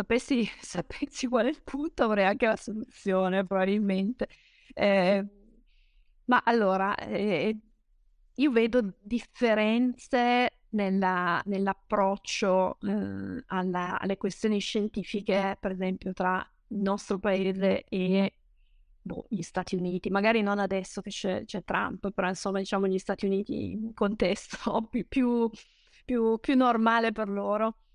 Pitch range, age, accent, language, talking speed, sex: 195-225 Hz, 30-49, native, Italian, 115 wpm, female